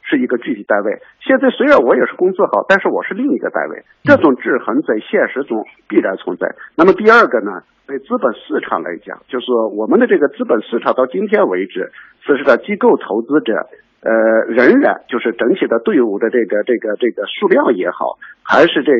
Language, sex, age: Chinese, male, 50-69